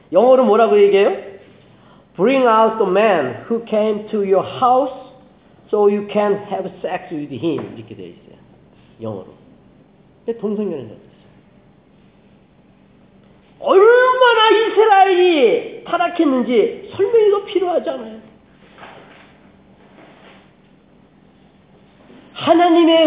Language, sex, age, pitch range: Korean, male, 40-59, 210-340 Hz